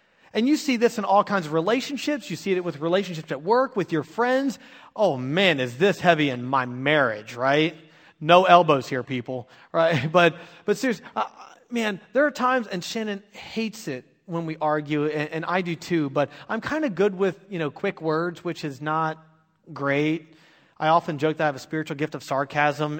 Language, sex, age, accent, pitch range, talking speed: English, male, 30-49, American, 160-245 Hz, 205 wpm